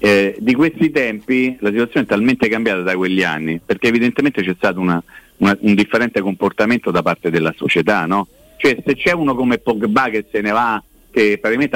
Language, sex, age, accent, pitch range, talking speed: Italian, male, 50-69, native, 110-135 Hz, 195 wpm